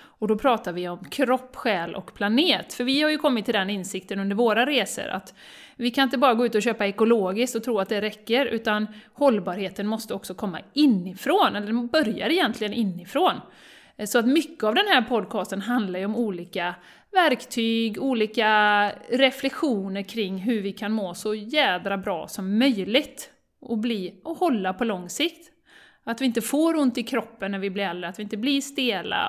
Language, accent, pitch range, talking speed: Swedish, native, 200-260 Hz, 190 wpm